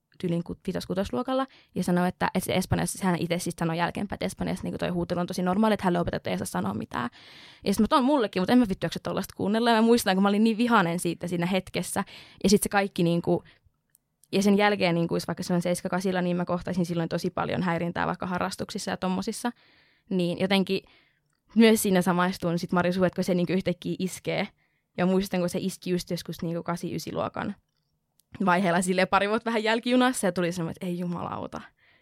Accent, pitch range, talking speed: native, 175-215 Hz, 210 wpm